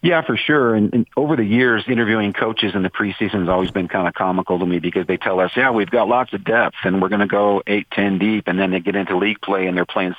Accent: American